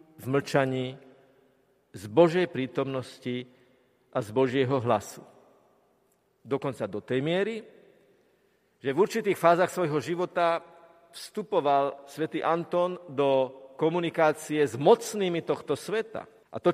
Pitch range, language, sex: 135-165 Hz, Slovak, male